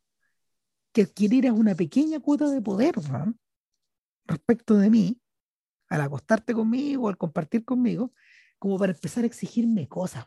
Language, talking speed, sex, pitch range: Spanish, 135 wpm, female, 180-245 Hz